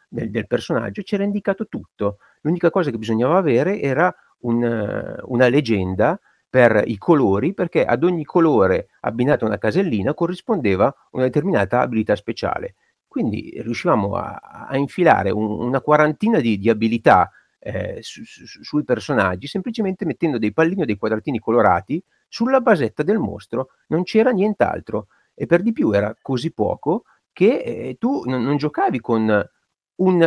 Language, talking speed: Italian, 155 wpm